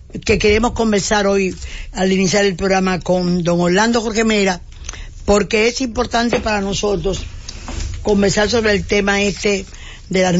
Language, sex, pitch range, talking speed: English, female, 185-220 Hz, 145 wpm